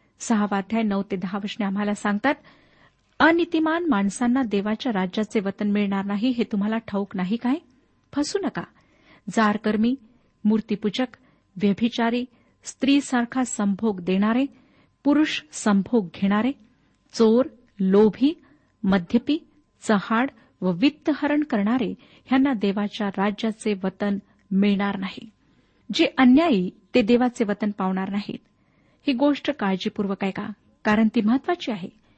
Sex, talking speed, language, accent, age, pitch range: female, 110 wpm, Marathi, native, 50-69, 205-255 Hz